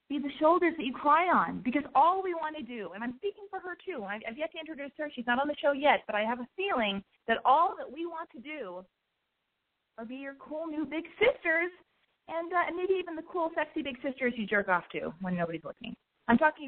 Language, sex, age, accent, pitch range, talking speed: English, female, 30-49, American, 195-305 Hz, 250 wpm